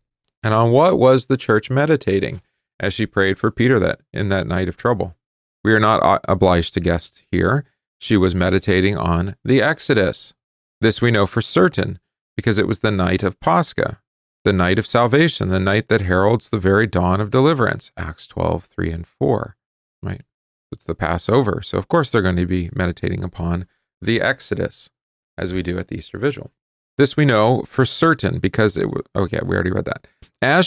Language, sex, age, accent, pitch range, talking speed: English, male, 40-59, American, 95-130 Hz, 190 wpm